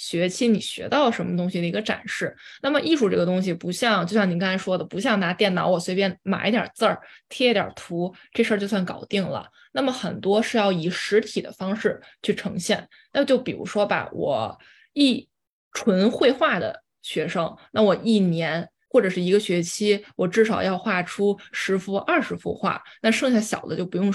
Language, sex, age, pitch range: Chinese, female, 20-39, 185-235 Hz